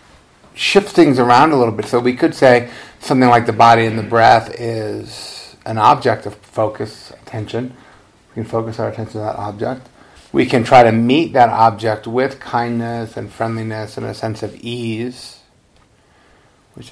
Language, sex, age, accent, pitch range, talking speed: English, male, 50-69, American, 105-120 Hz, 170 wpm